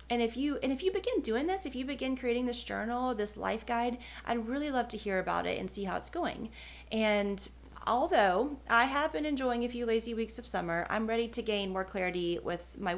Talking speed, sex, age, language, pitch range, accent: 230 wpm, female, 30-49, English, 195-245 Hz, American